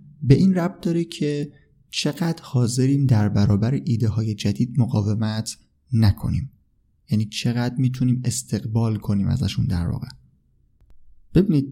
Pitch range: 105-135 Hz